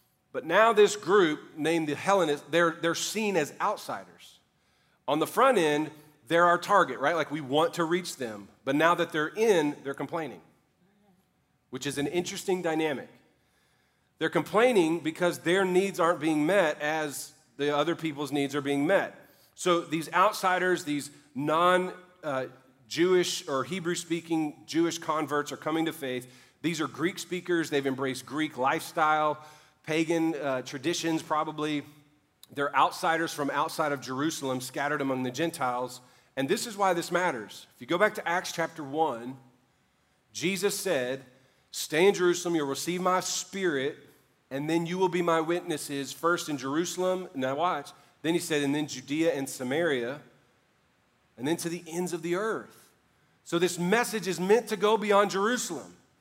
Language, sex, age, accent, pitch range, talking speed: English, male, 40-59, American, 145-180 Hz, 160 wpm